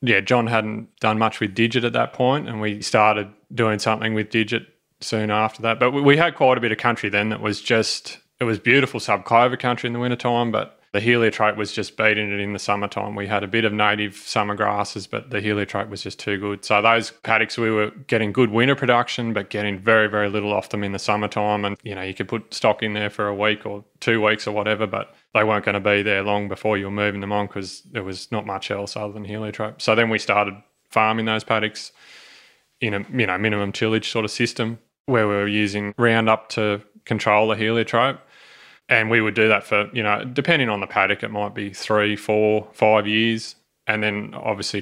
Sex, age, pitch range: male, 20-39, 105-115 Hz